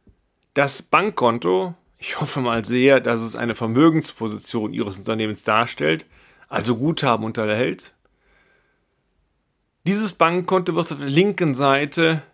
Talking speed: 110 wpm